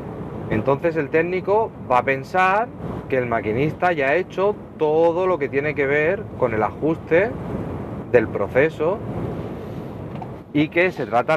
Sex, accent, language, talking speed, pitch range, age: male, Spanish, Spanish, 145 wpm, 115-150 Hz, 30-49